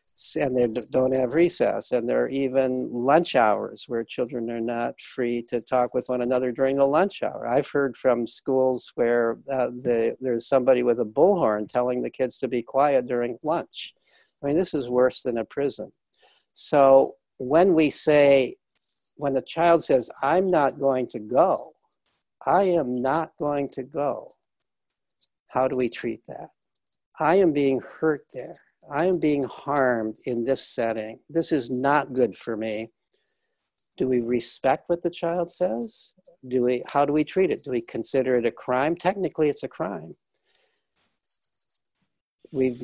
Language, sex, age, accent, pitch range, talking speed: English, male, 60-79, American, 120-145 Hz, 165 wpm